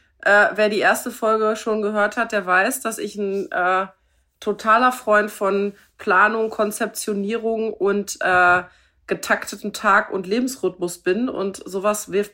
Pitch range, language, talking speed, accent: 190-235 Hz, German, 140 wpm, German